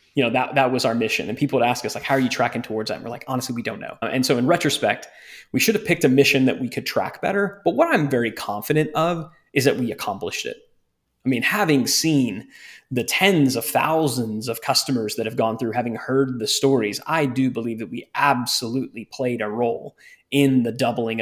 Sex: male